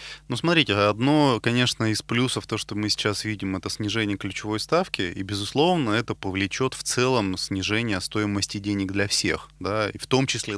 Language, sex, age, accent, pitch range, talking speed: Russian, male, 20-39, native, 100-125 Hz, 165 wpm